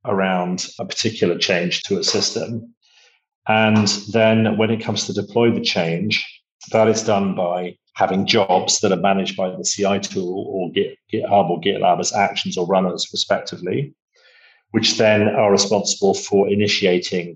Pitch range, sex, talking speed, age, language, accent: 95-115 Hz, male, 150 wpm, 40-59, English, British